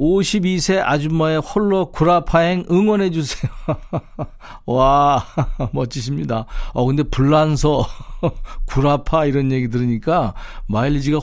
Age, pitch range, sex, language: 40-59, 125-165 Hz, male, Korean